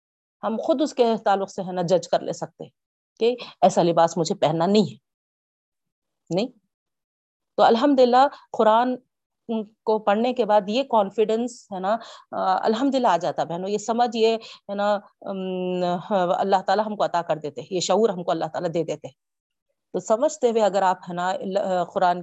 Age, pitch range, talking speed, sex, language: 40-59, 180-225 Hz, 150 wpm, female, Urdu